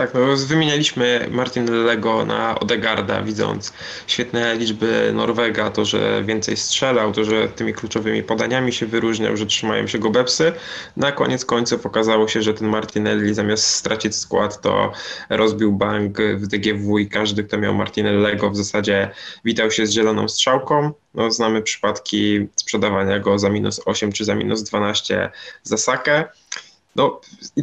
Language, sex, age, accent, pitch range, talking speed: Polish, male, 10-29, native, 110-125 Hz, 155 wpm